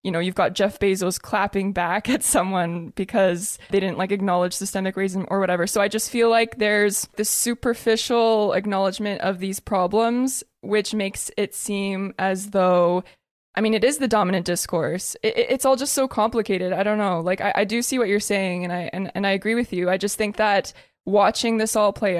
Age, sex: 20-39, female